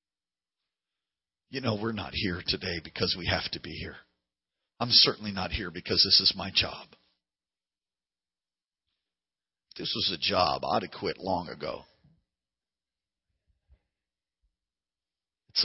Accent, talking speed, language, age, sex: American, 120 wpm, English, 40-59, male